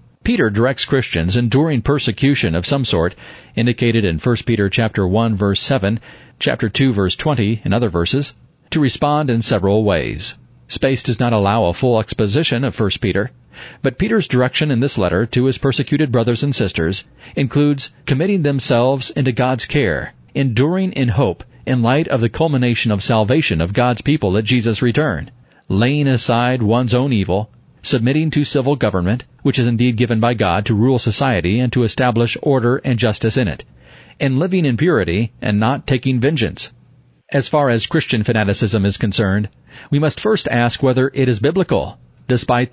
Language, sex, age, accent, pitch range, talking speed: English, male, 40-59, American, 110-135 Hz, 170 wpm